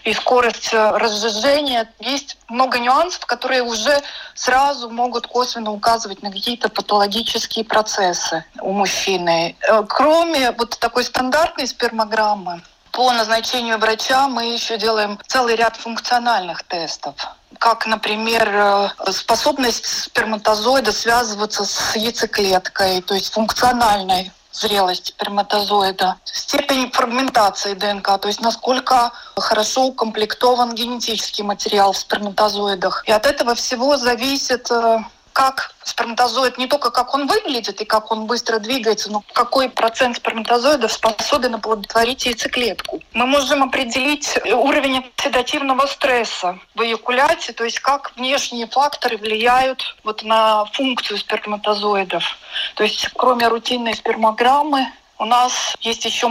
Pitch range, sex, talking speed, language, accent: 215-255 Hz, female, 115 wpm, Russian, native